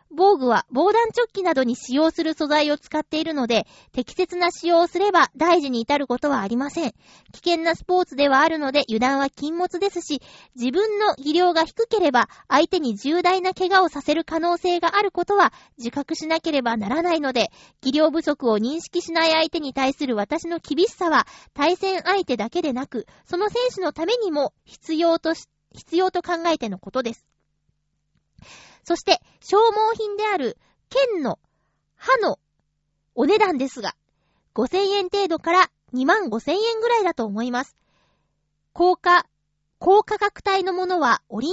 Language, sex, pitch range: Japanese, female, 250-365 Hz